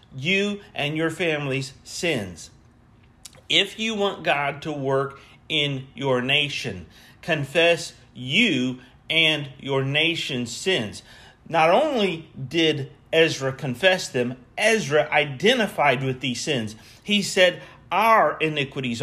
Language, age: English, 40-59